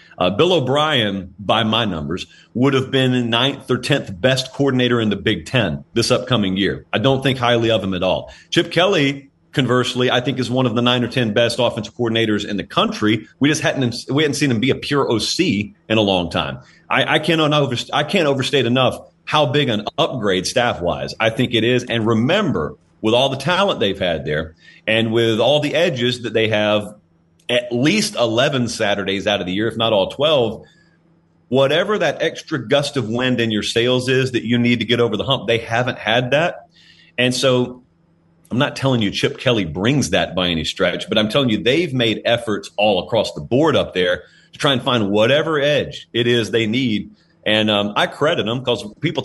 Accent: American